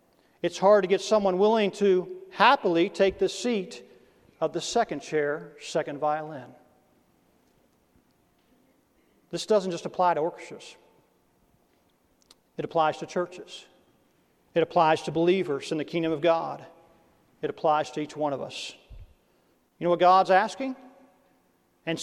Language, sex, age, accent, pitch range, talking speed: English, male, 40-59, American, 170-235 Hz, 135 wpm